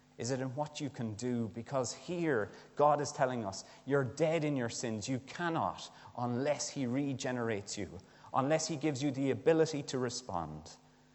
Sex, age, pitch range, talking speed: male, 30-49, 105-135 Hz, 170 wpm